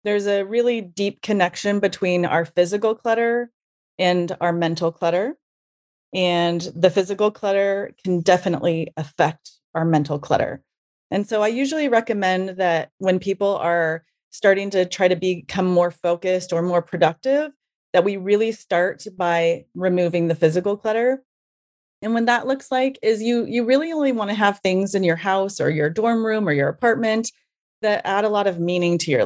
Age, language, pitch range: 30-49, English, 175-215 Hz